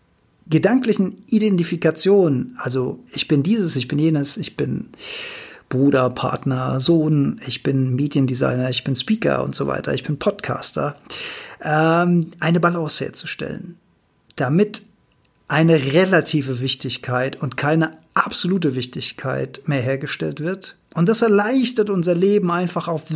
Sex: male